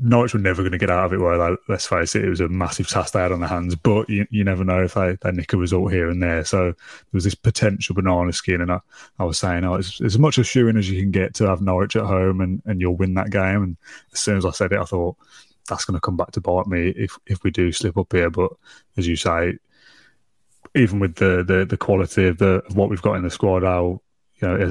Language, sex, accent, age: English, male, British, 20-39